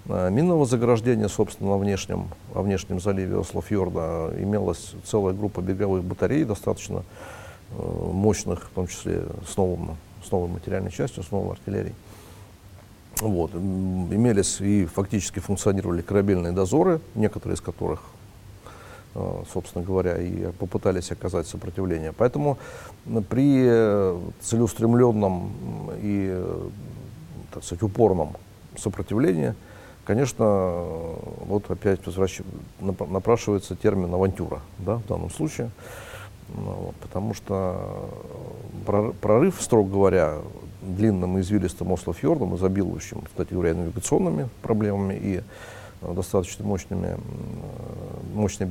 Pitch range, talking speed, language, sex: 95-110 Hz, 100 wpm, Russian, male